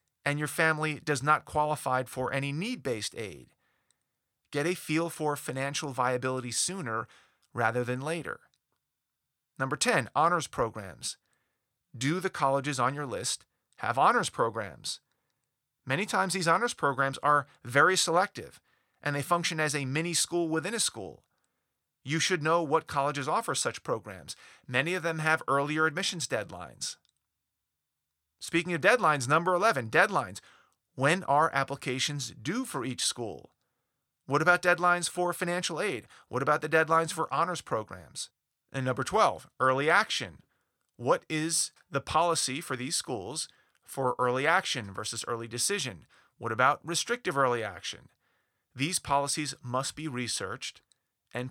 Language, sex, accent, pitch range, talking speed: English, male, American, 130-170 Hz, 140 wpm